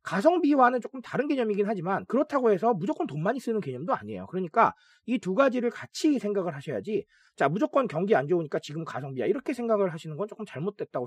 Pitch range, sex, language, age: 160-235 Hz, male, Korean, 40-59